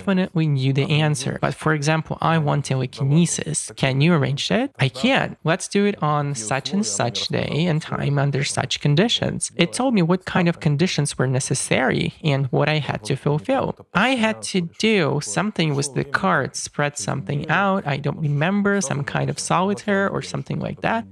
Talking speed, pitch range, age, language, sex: 190 wpm, 140-185 Hz, 30-49, English, male